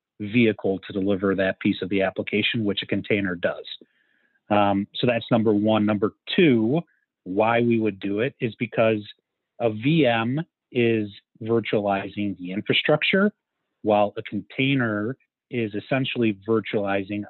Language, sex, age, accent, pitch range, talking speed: English, male, 30-49, American, 100-120 Hz, 130 wpm